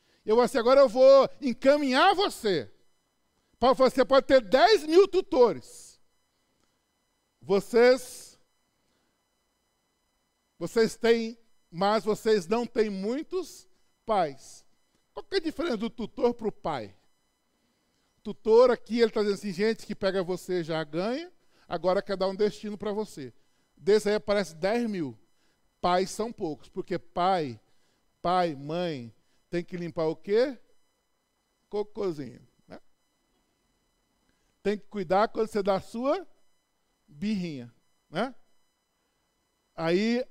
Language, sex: Portuguese, male